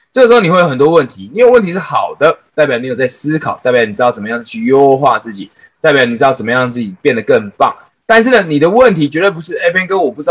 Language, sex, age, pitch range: Chinese, male, 20-39, 140-225 Hz